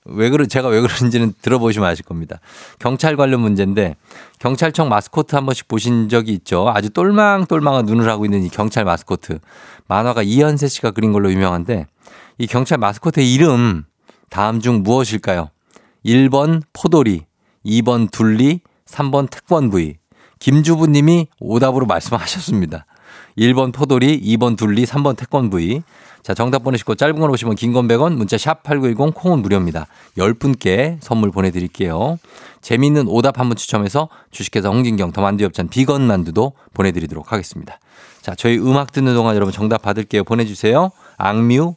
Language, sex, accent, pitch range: Korean, male, native, 100-140 Hz